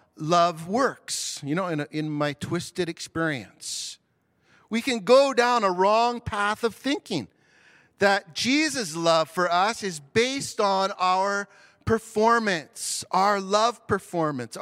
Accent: American